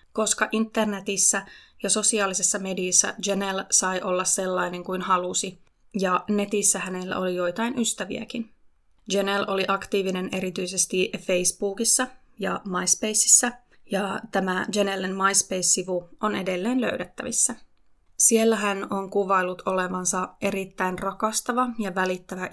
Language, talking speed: Finnish, 105 wpm